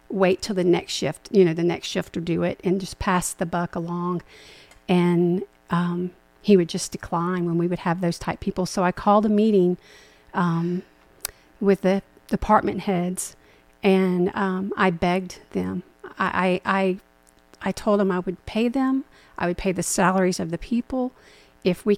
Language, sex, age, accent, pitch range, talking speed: English, female, 40-59, American, 175-195 Hz, 180 wpm